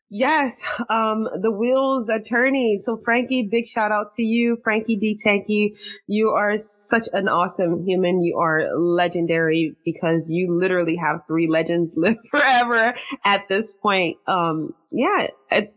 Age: 20-39